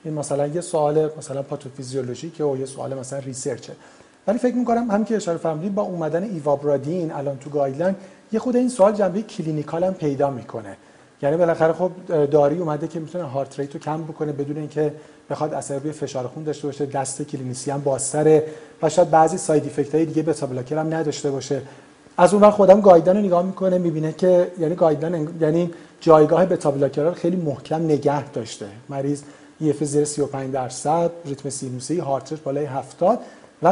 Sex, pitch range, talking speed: male, 145-180 Hz, 175 wpm